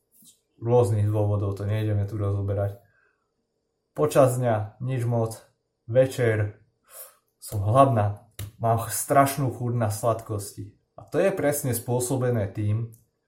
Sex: male